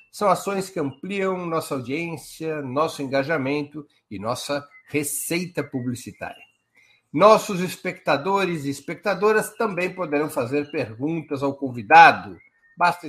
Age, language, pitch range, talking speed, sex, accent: 60-79, Portuguese, 140-195 Hz, 105 wpm, male, Brazilian